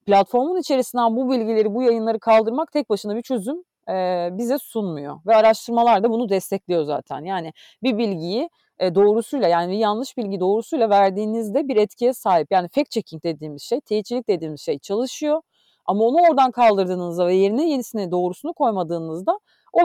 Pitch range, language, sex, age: 205-265 Hz, Turkish, female, 40-59